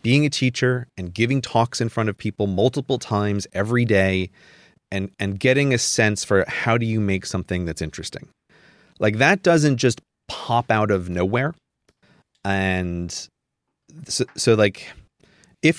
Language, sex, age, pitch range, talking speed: English, male, 30-49, 95-130 Hz, 150 wpm